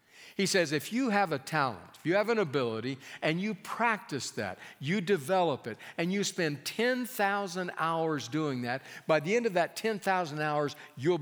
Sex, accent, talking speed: male, American, 180 wpm